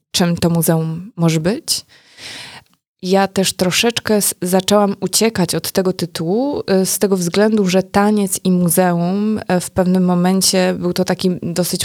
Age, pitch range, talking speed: 20-39, 175-195 Hz, 135 wpm